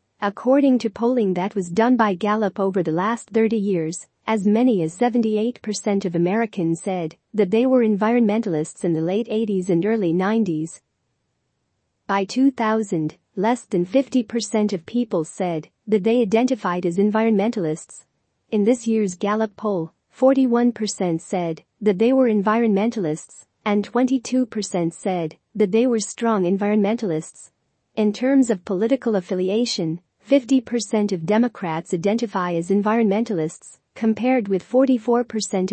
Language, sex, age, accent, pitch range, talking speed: English, female, 40-59, American, 185-230 Hz, 130 wpm